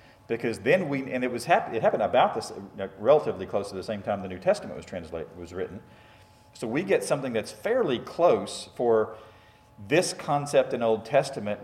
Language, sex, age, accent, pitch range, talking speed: English, male, 40-59, American, 95-125 Hz, 180 wpm